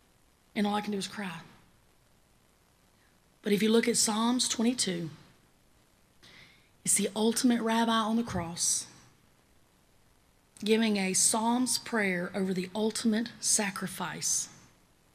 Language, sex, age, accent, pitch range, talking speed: English, female, 30-49, American, 185-220 Hz, 115 wpm